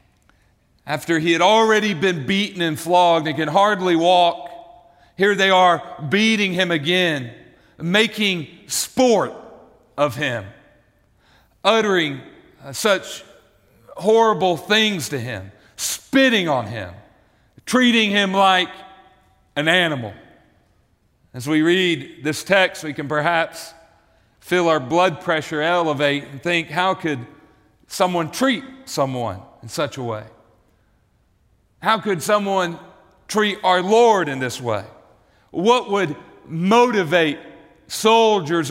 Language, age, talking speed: English, 40-59, 115 wpm